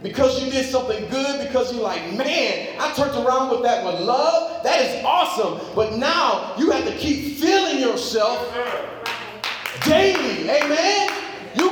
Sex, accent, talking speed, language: male, American, 155 wpm, English